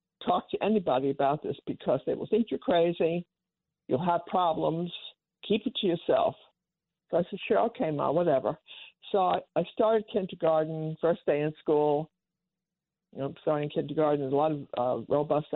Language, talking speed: English, 170 wpm